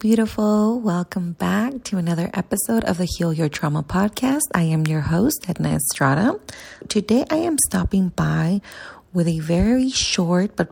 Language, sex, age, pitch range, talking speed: English, female, 30-49, 160-210 Hz, 155 wpm